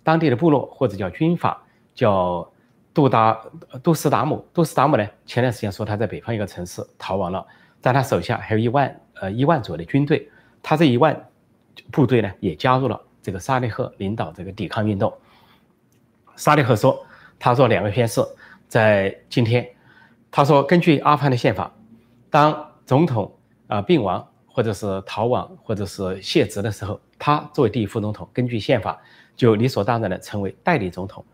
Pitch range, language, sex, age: 100-130 Hz, Chinese, male, 30-49